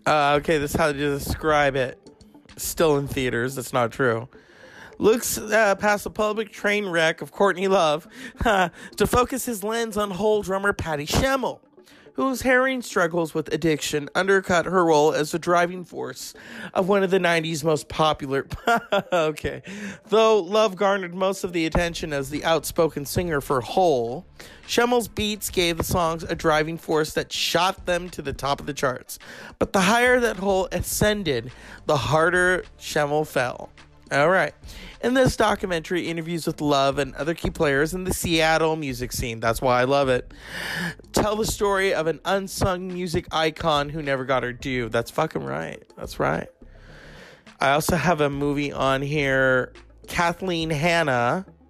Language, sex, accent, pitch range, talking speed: English, male, American, 140-190 Hz, 165 wpm